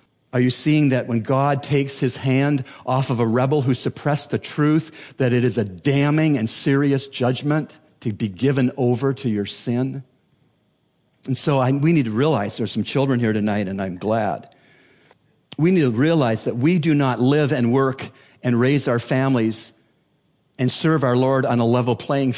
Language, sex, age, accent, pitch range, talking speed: English, male, 50-69, American, 120-150 Hz, 185 wpm